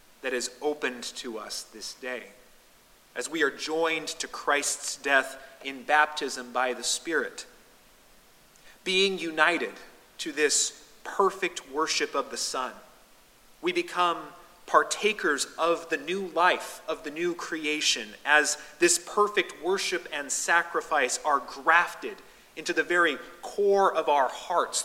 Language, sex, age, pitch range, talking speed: English, male, 30-49, 145-190 Hz, 130 wpm